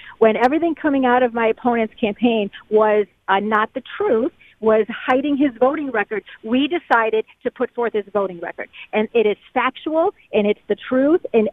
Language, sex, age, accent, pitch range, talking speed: English, female, 40-59, American, 220-280 Hz, 180 wpm